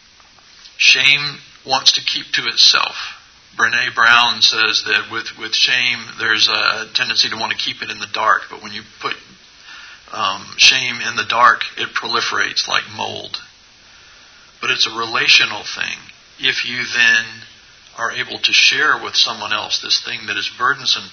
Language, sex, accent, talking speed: English, male, American, 160 wpm